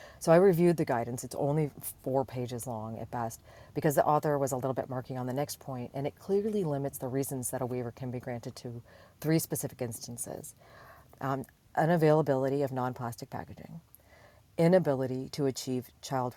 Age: 40-59